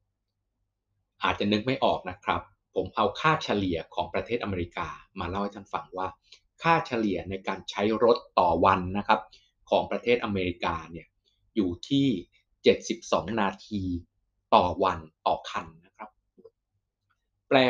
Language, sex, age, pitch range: Thai, male, 20-39, 100-130 Hz